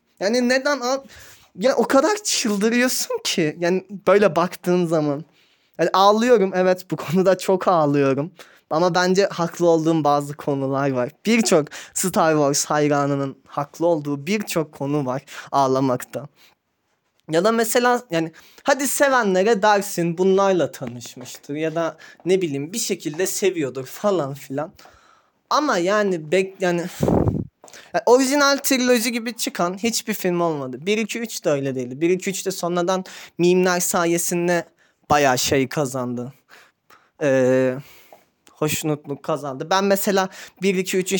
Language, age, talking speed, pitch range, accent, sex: Turkish, 20-39, 120 wpm, 150-200 Hz, native, male